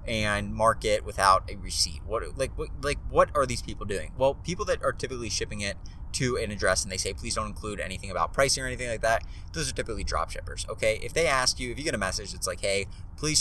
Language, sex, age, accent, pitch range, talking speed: English, male, 20-39, American, 90-115 Hz, 255 wpm